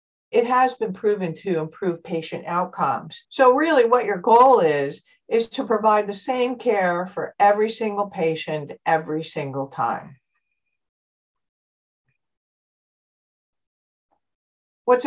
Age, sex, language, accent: 60-79, female, English, American